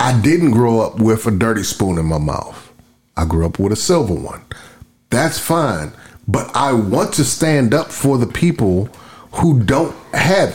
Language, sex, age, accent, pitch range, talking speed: English, male, 30-49, American, 105-145 Hz, 180 wpm